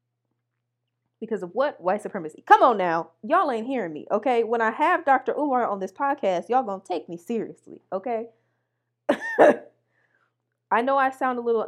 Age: 20-39